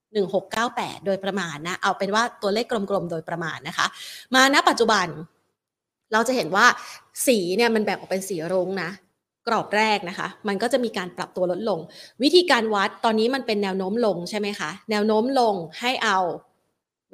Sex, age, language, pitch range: female, 20-39, Thai, 190-240 Hz